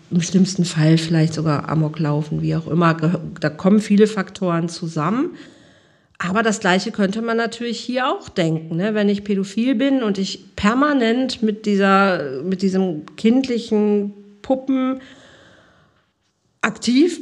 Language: German